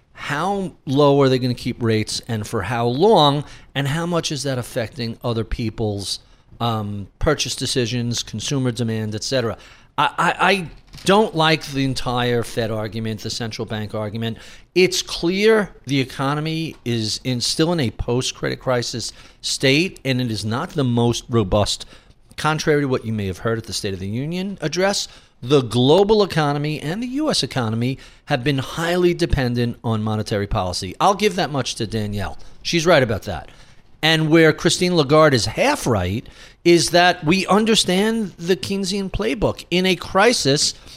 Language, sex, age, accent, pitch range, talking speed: English, male, 50-69, American, 115-160 Hz, 165 wpm